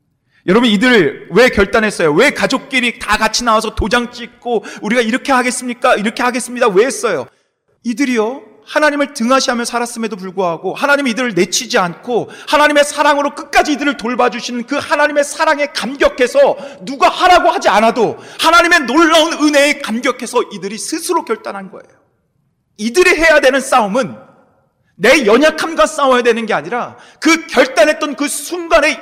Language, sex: Korean, male